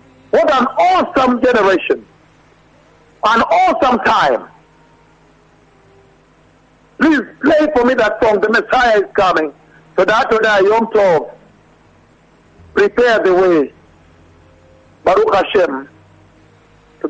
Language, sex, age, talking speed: English, male, 60-79, 100 wpm